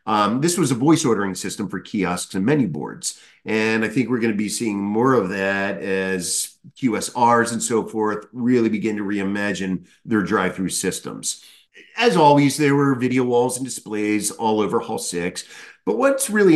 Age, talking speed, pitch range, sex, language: 50-69, 180 wpm, 100-150 Hz, male, English